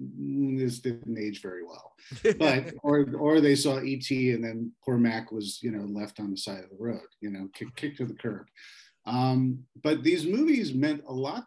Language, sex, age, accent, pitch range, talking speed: English, male, 50-69, American, 115-145 Hz, 205 wpm